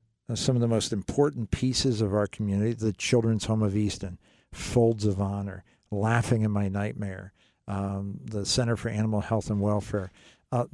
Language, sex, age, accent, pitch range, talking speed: English, male, 50-69, American, 105-125 Hz, 170 wpm